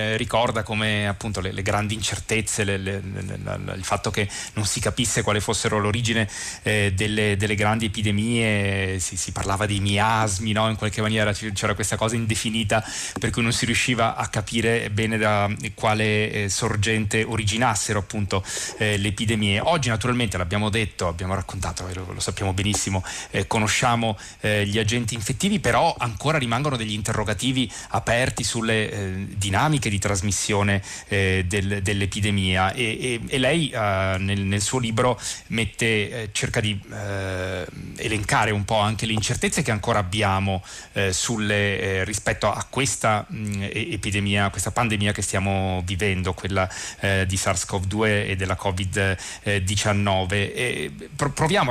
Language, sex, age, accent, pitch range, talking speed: Italian, male, 30-49, native, 100-115 Hz, 145 wpm